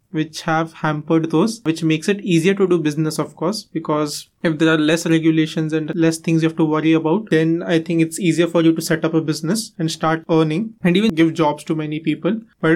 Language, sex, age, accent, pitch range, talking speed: English, male, 20-39, Indian, 155-175 Hz, 235 wpm